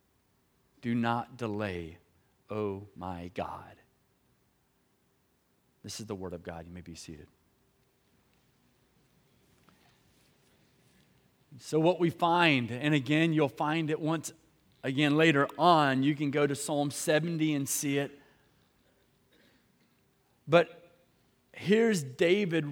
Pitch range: 140-200 Hz